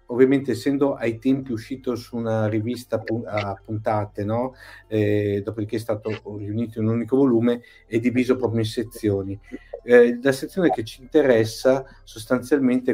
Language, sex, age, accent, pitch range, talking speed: Italian, male, 50-69, native, 110-135 Hz, 150 wpm